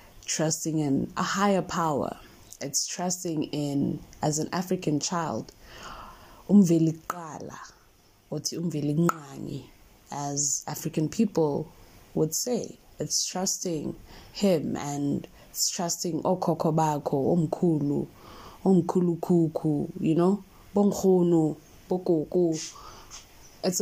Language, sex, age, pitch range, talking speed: English, female, 20-39, 150-180 Hz, 70 wpm